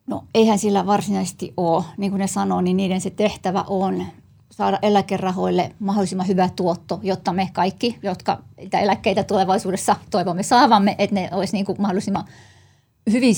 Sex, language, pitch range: female, Finnish, 190-210 Hz